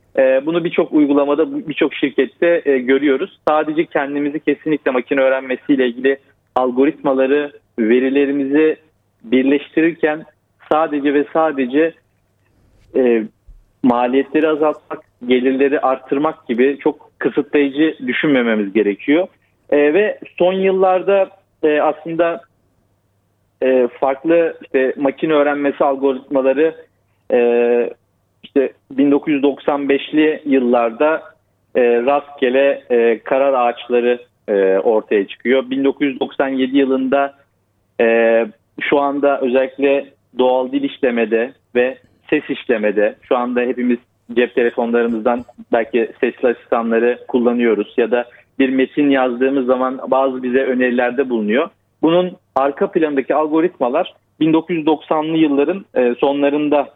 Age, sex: 40-59, male